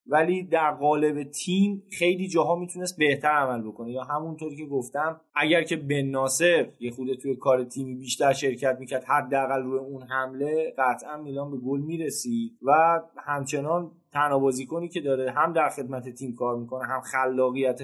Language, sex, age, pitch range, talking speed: Persian, male, 20-39, 135-175 Hz, 170 wpm